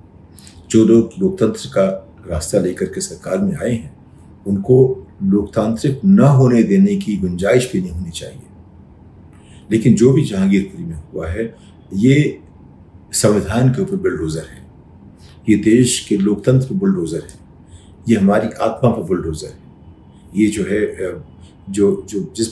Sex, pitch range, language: male, 95-130 Hz, Hindi